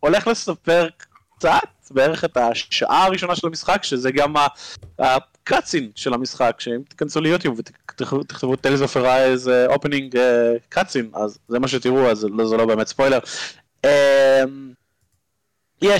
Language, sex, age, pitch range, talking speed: Hebrew, male, 20-39, 120-150 Hz, 140 wpm